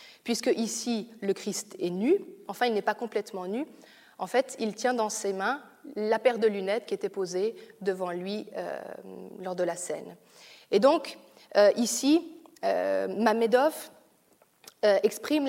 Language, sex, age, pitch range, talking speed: French, female, 30-49, 200-250 Hz, 160 wpm